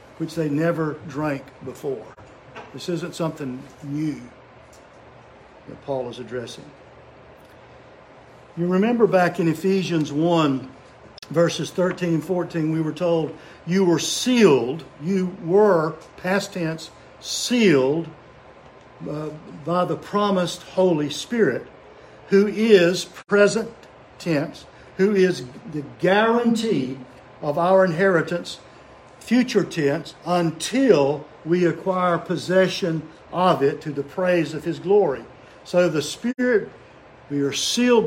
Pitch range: 140-185 Hz